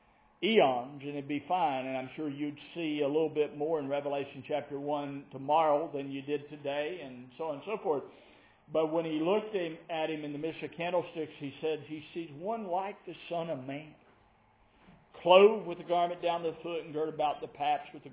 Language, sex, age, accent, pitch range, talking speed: English, male, 50-69, American, 145-180 Hz, 215 wpm